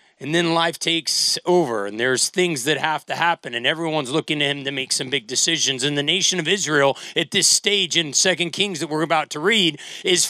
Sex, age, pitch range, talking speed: male, 40-59, 165-215 Hz, 225 wpm